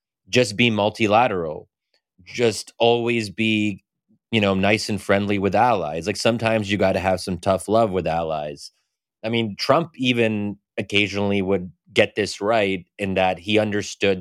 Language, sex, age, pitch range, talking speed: English, male, 30-49, 95-110 Hz, 155 wpm